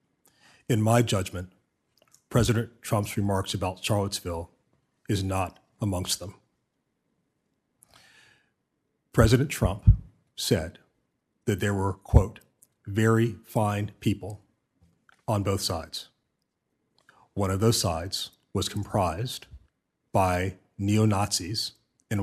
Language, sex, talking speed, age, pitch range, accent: English, male, 90 wpm, 40-59, 95-110 Hz, American